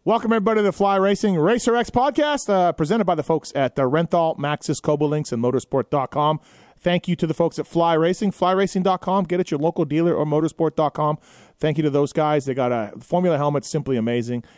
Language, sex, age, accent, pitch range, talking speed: English, male, 30-49, American, 130-170 Hz, 205 wpm